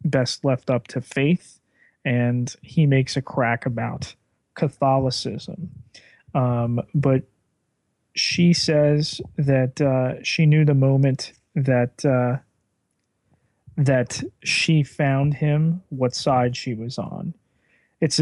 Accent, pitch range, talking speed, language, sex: American, 125-145 Hz, 110 wpm, English, male